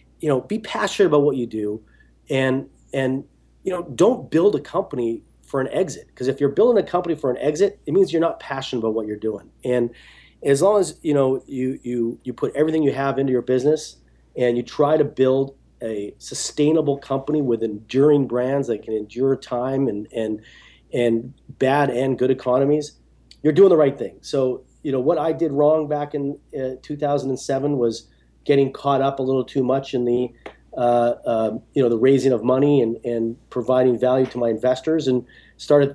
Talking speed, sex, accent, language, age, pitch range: 195 wpm, male, American, English, 40-59, 115-140 Hz